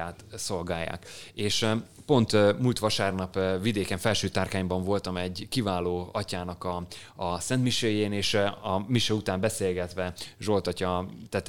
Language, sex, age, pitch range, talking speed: Hungarian, male, 20-39, 95-110 Hz, 115 wpm